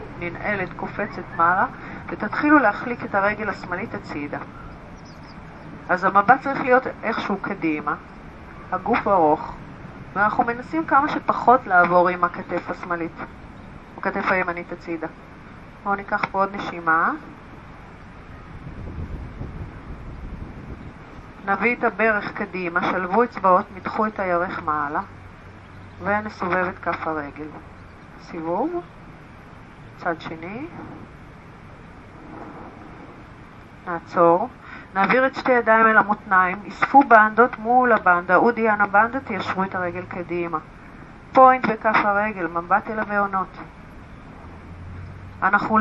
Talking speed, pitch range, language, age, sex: 100 wpm, 165-220 Hz, Hebrew, 40-59, female